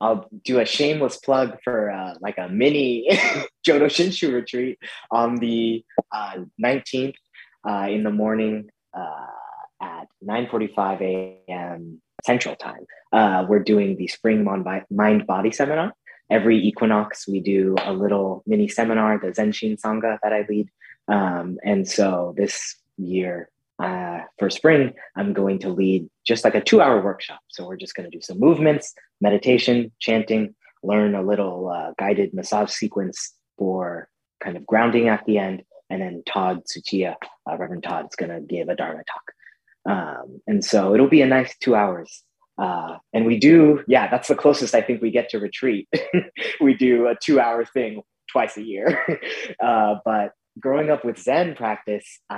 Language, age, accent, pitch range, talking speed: English, 20-39, American, 100-130 Hz, 165 wpm